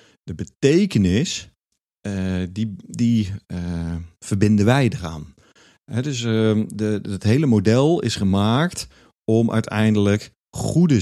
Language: Dutch